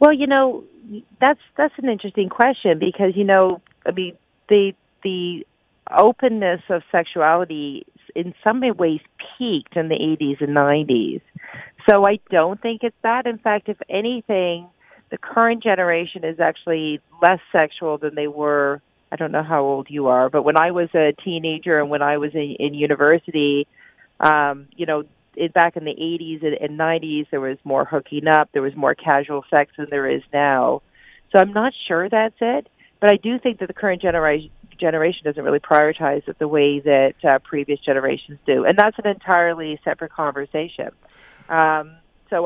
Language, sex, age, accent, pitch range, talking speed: English, female, 40-59, American, 150-195 Hz, 175 wpm